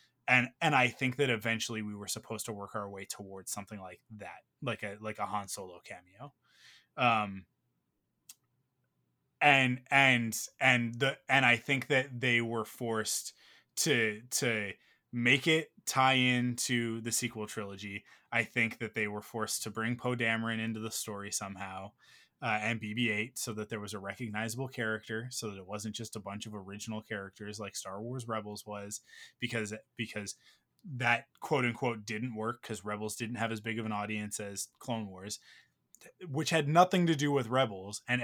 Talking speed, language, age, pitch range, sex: 175 wpm, English, 20-39, 105-125 Hz, male